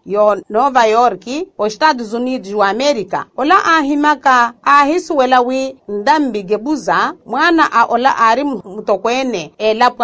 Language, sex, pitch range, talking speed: Portuguese, female, 215-295 Hz, 125 wpm